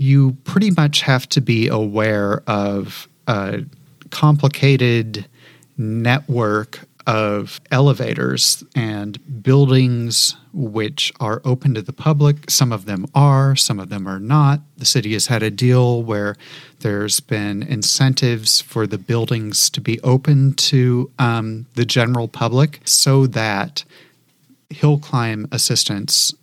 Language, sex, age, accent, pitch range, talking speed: English, male, 30-49, American, 110-145 Hz, 125 wpm